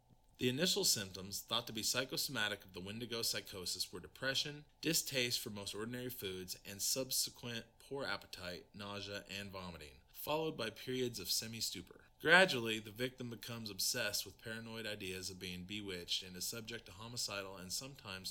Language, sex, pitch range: English, male, 95-125 Hz